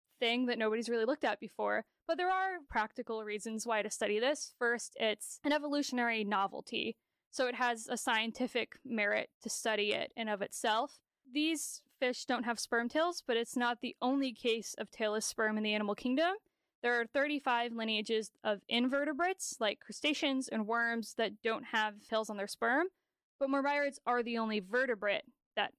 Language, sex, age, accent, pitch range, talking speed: English, female, 10-29, American, 215-270 Hz, 175 wpm